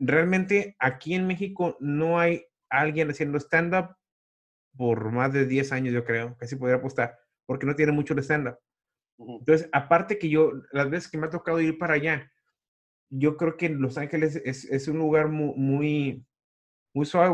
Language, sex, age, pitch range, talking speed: Spanish, male, 30-49, 135-175 Hz, 175 wpm